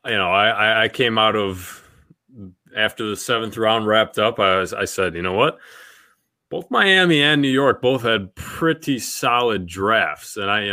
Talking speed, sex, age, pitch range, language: 185 wpm, male, 20-39, 100-135 Hz, English